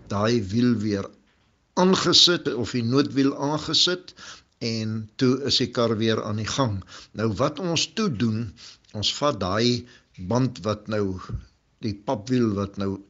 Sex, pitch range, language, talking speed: male, 105-140 Hz, English, 140 wpm